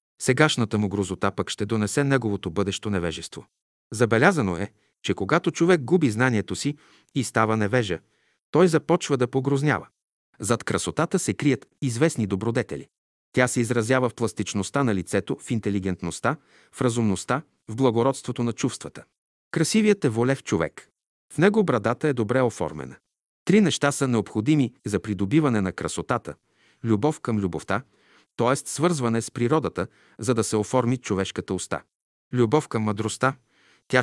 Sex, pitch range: male, 105-135 Hz